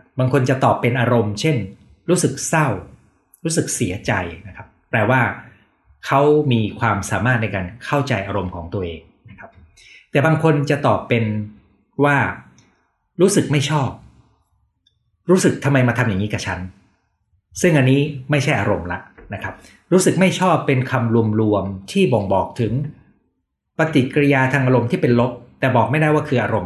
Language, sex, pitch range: Thai, male, 105-140 Hz